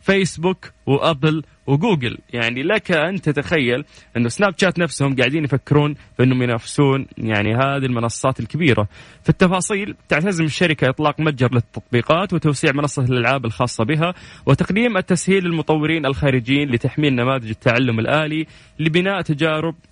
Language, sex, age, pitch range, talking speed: English, male, 20-39, 125-160 Hz, 125 wpm